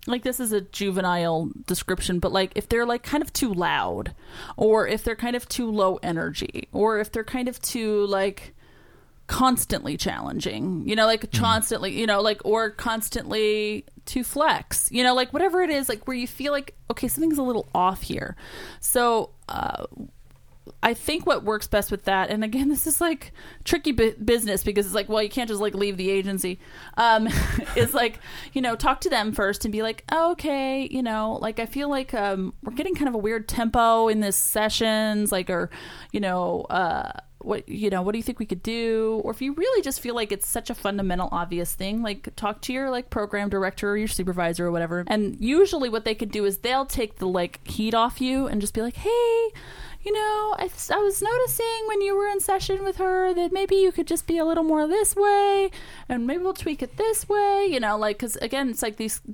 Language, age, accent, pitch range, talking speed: English, 30-49, American, 205-275 Hz, 220 wpm